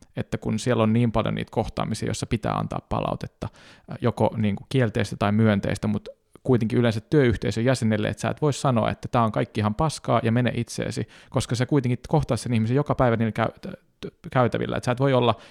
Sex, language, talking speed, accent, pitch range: male, Finnish, 210 wpm, native, 105-125 Hz